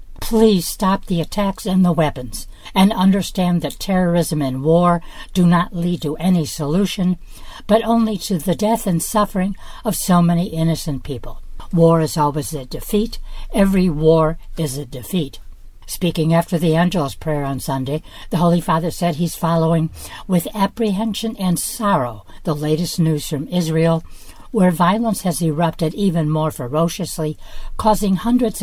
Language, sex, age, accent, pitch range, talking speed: English, female, 60-79, American, 150-185 Hz, 150 wpm